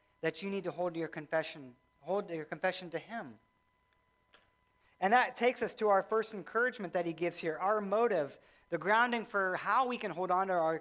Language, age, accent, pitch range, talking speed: English, 40-59, American, 170-225 Hz, 200 wpm